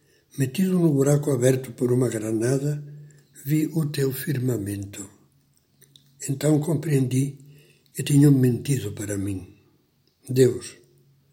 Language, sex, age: Portuguese, male, 60-79